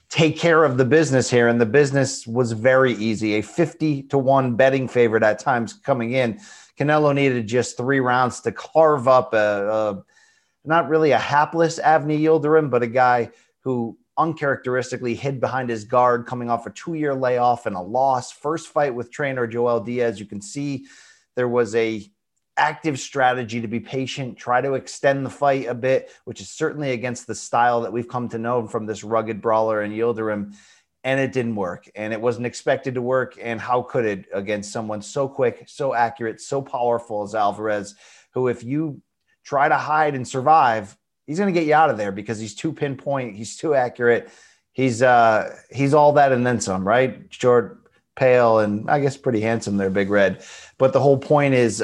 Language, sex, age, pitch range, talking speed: English, male, 30-49, 115-135 Hz, 195 wpm